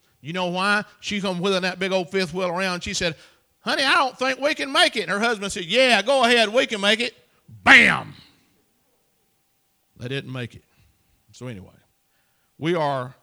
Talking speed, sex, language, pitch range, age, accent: 190 wpm, male, English, 140-185 Hz, 50-69, American